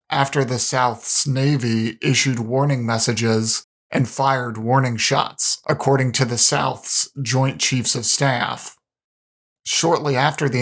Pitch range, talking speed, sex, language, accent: 120-145 Hz, 125 wpm, male, English, American